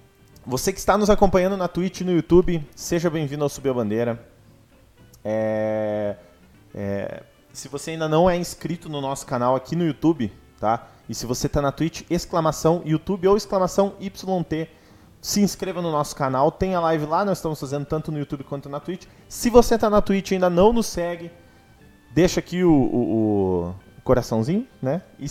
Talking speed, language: 180 wpm, Portuguese